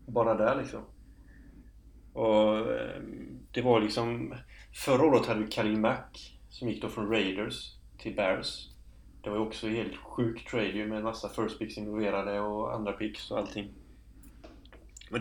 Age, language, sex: 30-49, Swedish, male